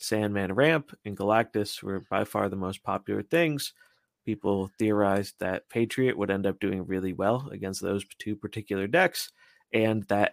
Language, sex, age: English, male, 30-49